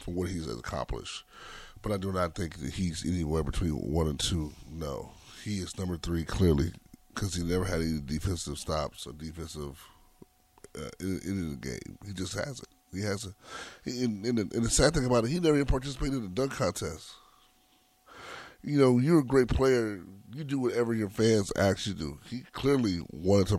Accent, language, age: American, English, 30-49